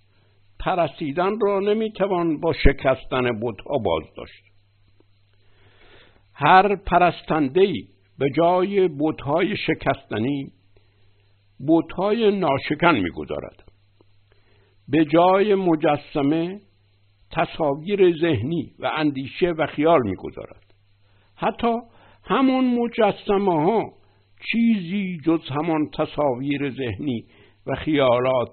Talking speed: 80 wpm